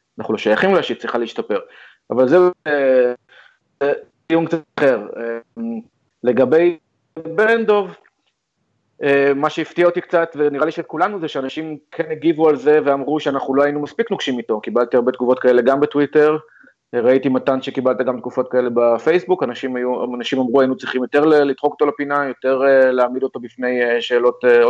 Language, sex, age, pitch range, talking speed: Hebrew, male, 30-49, 130-160 Hz, 170 wpm